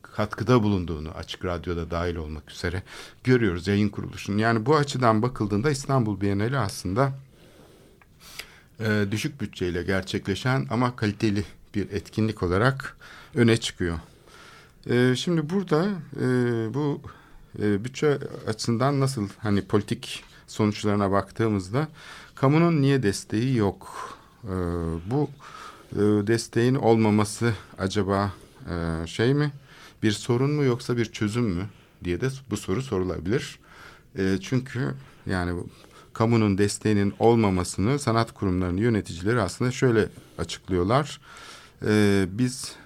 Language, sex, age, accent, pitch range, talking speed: Turkish, male, 50-69, native, 100-130 Hz, 110 wpm